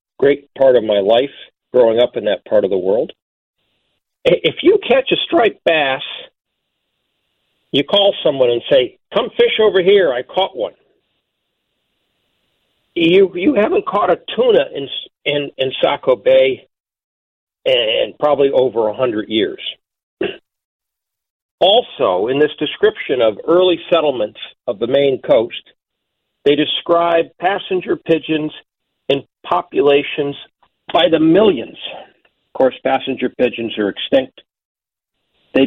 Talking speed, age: 125 wpm, 50-69